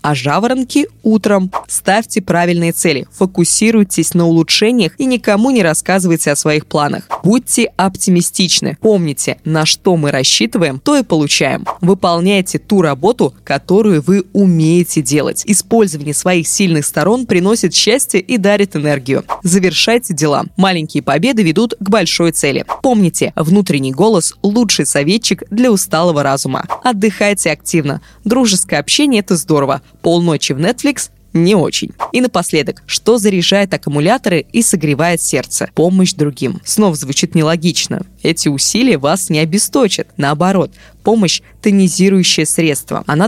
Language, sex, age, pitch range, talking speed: Russian, female, 20-39, 155-205 Hz, 130 wpm